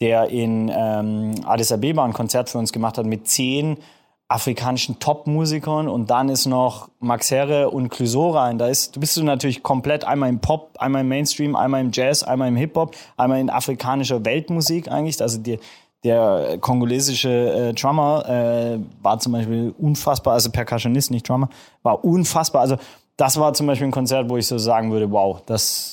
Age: 20-39